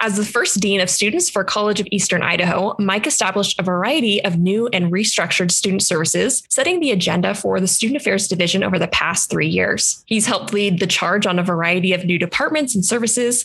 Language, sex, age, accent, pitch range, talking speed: English, female, 20-39, American, 185-225 Hz, 210 wpm